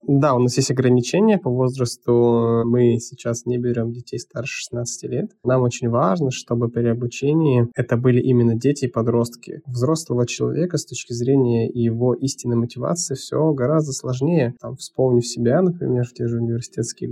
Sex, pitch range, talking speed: male, 115-130 Hz, 160 wpm